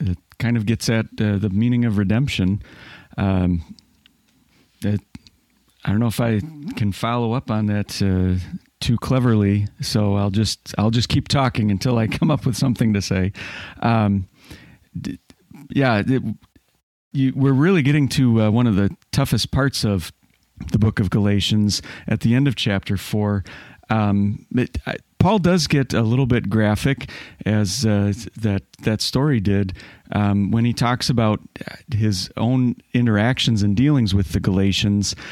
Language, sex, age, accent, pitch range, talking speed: English, male, 40-59, American, 100-125 Hz, 160 wpm